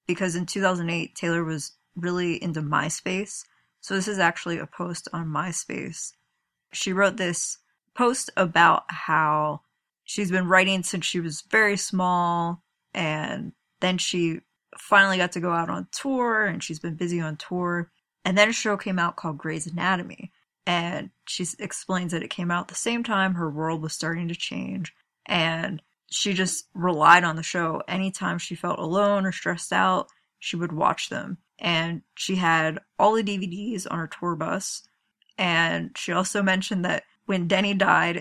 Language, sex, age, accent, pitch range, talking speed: English, female, 20-39, American, 170-195 Hz, 170 wpm